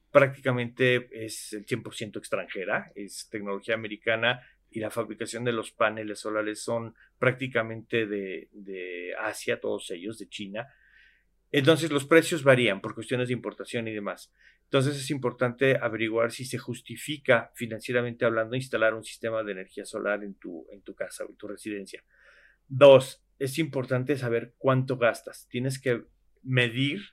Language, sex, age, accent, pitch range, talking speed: Spanish, male, 40-59, Mexican, 110-130 Hz, 150 wpm